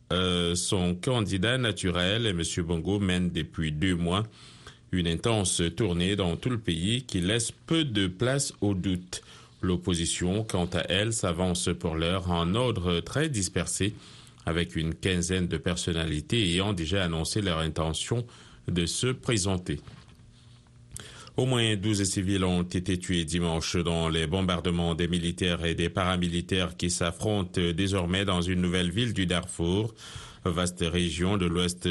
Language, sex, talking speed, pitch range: French, male, 145 wpm, 85-105 Hz